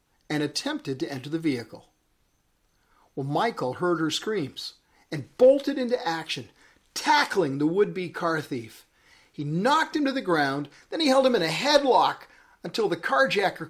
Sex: male